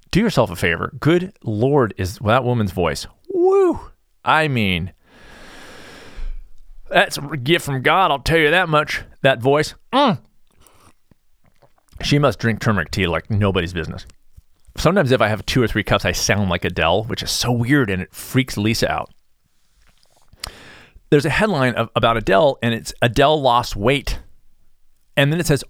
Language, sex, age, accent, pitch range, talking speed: English, male, 40-59, American, 100-145 Hz, 160 wpm